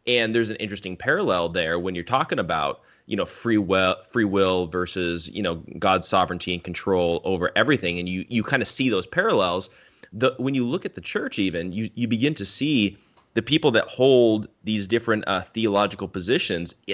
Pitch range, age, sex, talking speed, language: 90-105 Hz, 20-39, male, 190 wpm, English